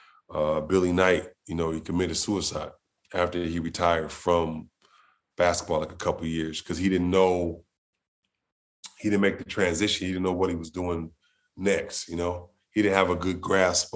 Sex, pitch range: male, 85-95 Hz